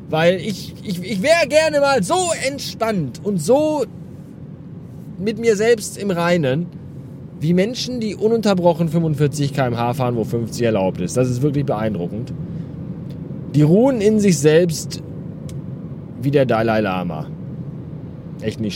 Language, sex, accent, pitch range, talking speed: German, male, German, 140-170 Hz, 135 wpm